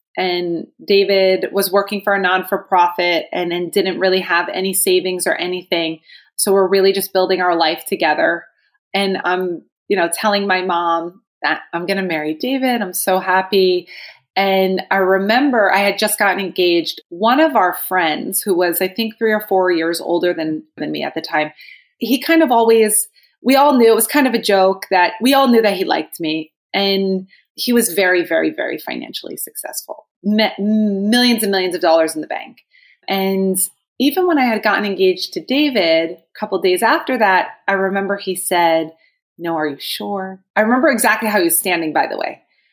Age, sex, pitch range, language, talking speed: 30-49, female, 180-230 Hz, English, 195 wpm